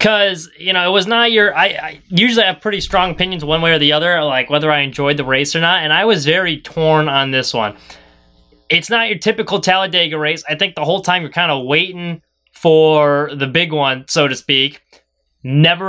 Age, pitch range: 20-39, 145-185 Hz